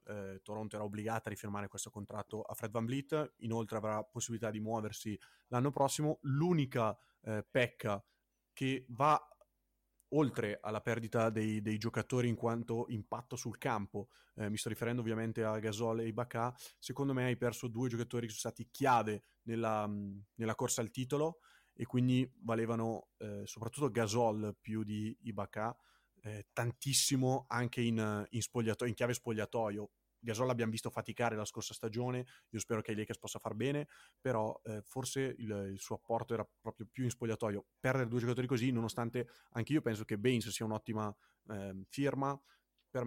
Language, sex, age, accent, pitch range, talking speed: Italian, male, 30-49, native, 110-120 Hz, 165 wpm